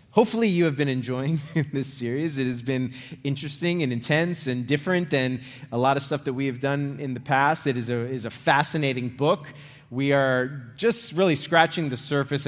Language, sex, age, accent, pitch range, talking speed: English, male, 30-49, American, 125-150 Hz, 190 wpm